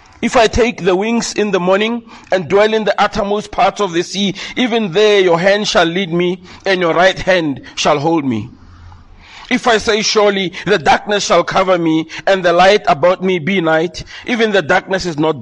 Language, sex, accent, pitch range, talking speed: English, male, South African, 170-215 Hz, 200 wpm